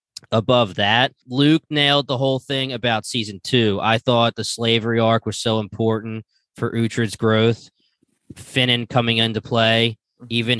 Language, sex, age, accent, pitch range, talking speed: English, male, 20-39, American, 110-130 Hz, 145 wpm